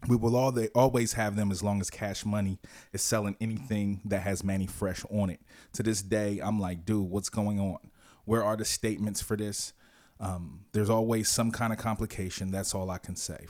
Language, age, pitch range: English, 20-39, 95-110 Hz